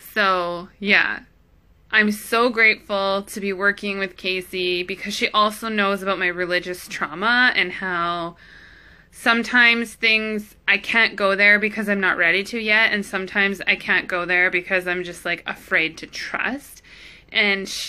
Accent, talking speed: American, 155 wpm